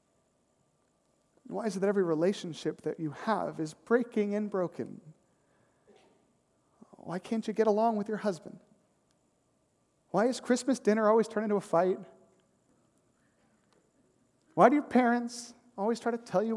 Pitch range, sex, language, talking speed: 205-295 Hz, male, English, 140 wpm